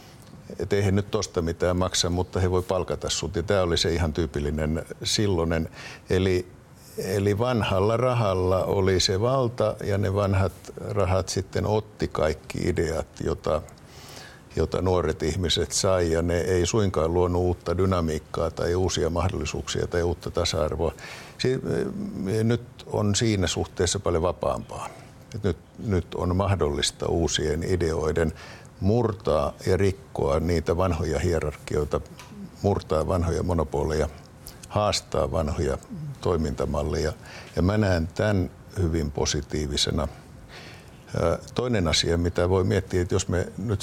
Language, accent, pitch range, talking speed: Finnish, native, 85-110 Hz, 120 wpm